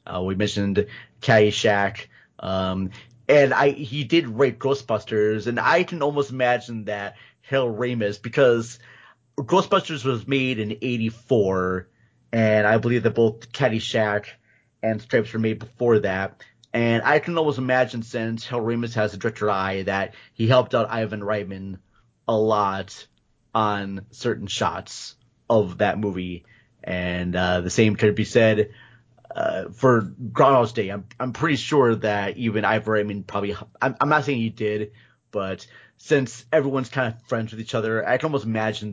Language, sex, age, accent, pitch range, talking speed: English, male, 30-49, American, 105-125 Hz, 160 wpm